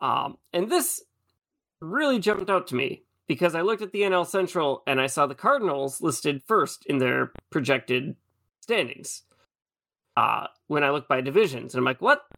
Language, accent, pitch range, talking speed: English, American, 140-200 Hz, 175 wpm